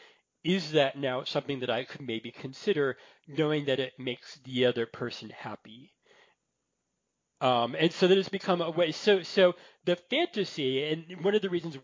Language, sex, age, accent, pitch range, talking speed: English, male, 40-59, American, 130-175 Hz, 170 wpm